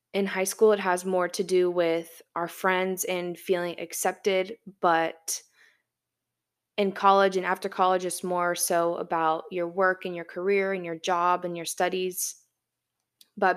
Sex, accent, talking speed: female, American, 160 wpm